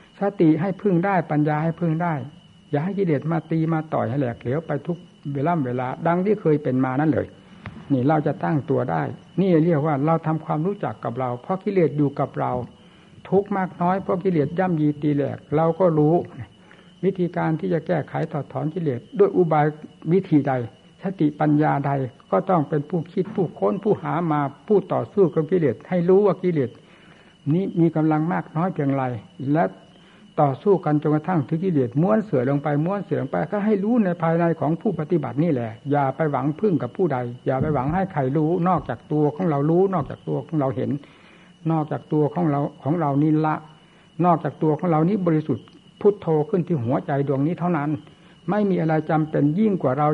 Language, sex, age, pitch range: Thai, male, 60-79, 145-180 Hz